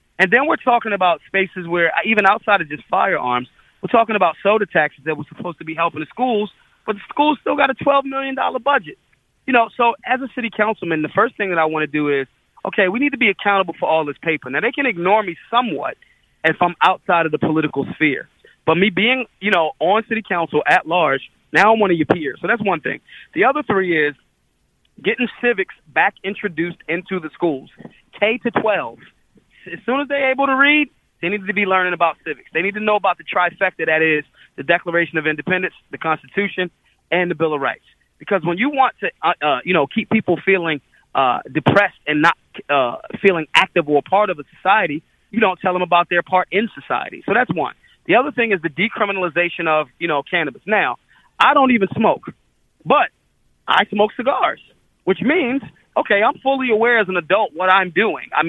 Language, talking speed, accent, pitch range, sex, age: English, 215 wpm, American, 165-225 Hz, male, 30-49